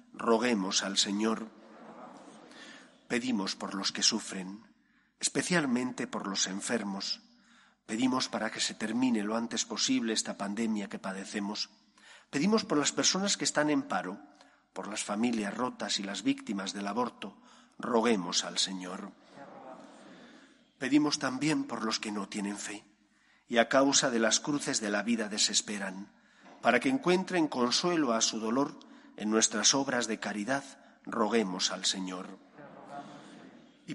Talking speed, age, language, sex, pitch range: 140 wpm, 40-59, Spanish, male, 105-180 Hz